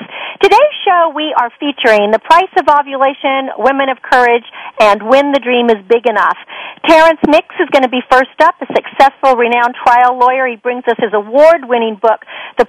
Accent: American